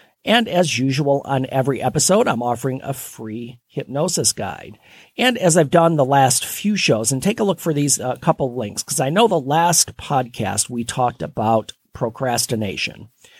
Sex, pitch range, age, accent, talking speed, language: male, 115-150 Hz, 50-69, American, 175 wpm, English